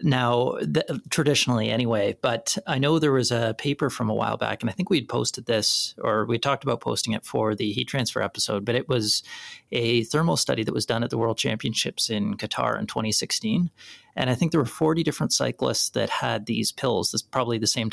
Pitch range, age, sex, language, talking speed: 110-130 Hz, 30-49, male, English, 215 wpm